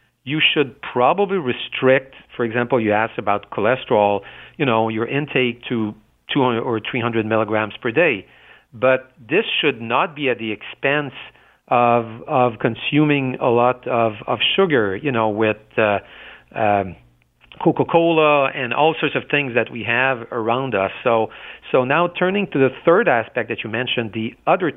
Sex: male